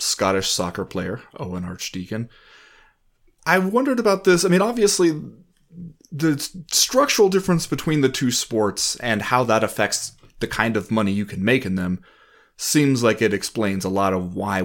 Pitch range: 100-145 Hz